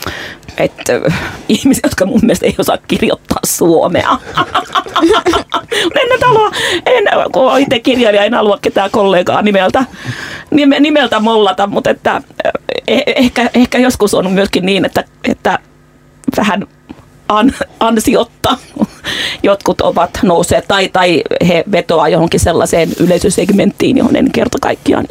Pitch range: 185-270 Hz